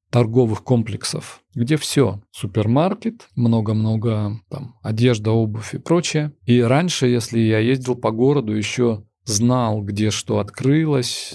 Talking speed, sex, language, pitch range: 120 wpm, male, Russian, 115-150 Hz